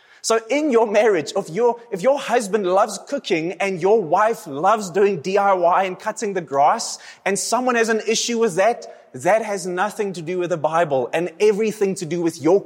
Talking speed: 195 wpm